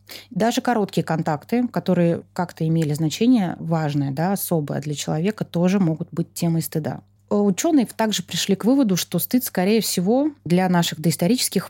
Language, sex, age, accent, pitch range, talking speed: Russian, female, 20-39, native, 165-205 Hz, 150 wpm